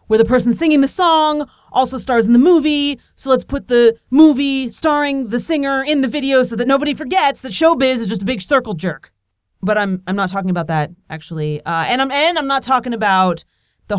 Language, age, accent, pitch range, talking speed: English, 30-49, American, 185-265 Hz, 220 wpm